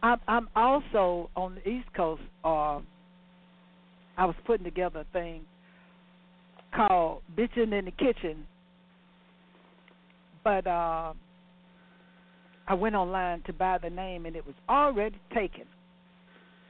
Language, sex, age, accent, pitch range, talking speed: English, female, 60-79, American, 180-220 Hz, 120 wpm